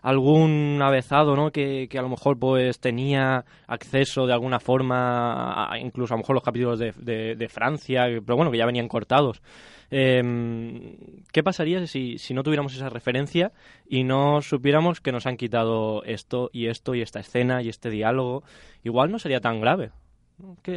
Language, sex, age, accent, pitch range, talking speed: Spanish, male, 20-39, Spanish, 120-145 Hz, 180 wpm